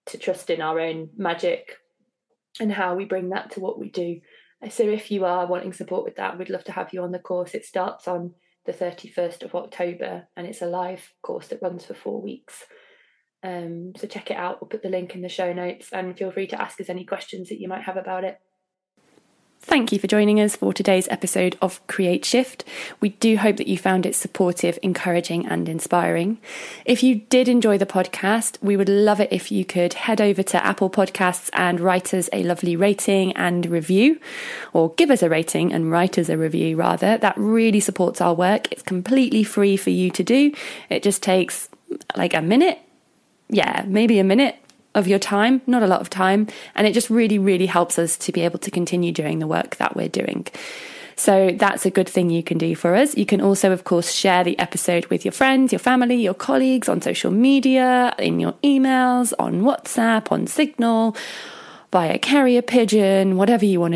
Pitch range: 180-225 Hz